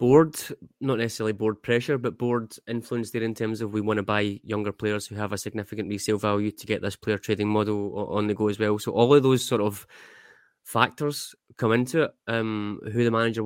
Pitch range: 100-115 Hz